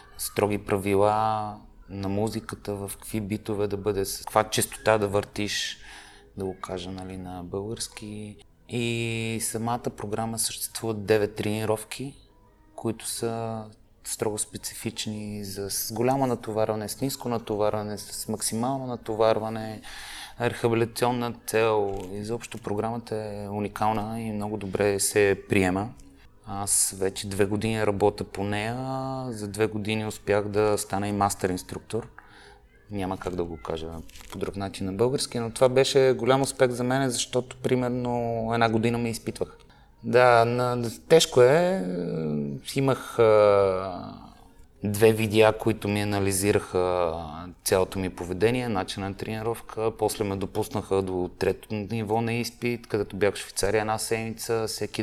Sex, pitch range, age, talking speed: male, 100-115 Hz, 30-49, 130 wpm